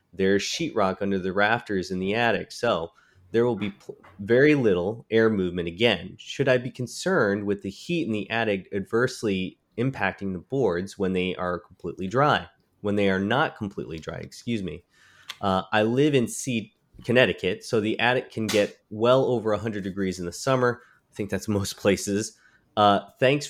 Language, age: English, 20-39